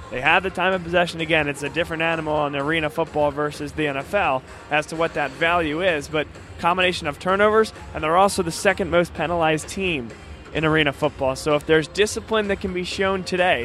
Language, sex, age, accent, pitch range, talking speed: English, male, 20-39, American, 155-185 Hz, 205 wpm